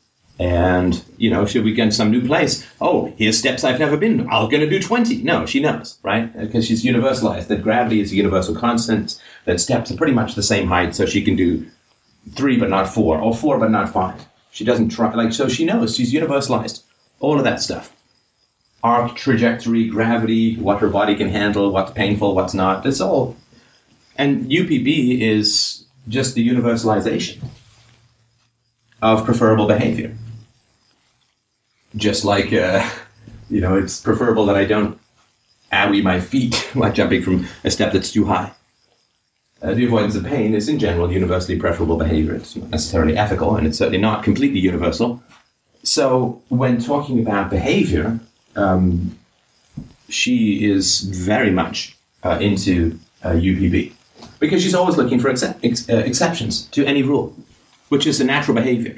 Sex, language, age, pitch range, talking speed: male, English, 30-49, 100-120 Hz, 165 wpm